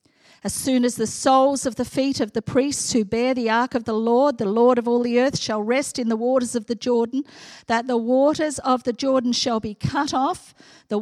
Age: 50-69